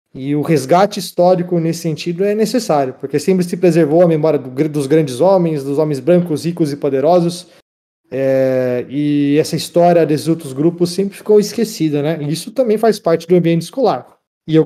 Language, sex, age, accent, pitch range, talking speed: Portuguese, male, 20-39, Brazilian, 140-180 Hz, 175 wpm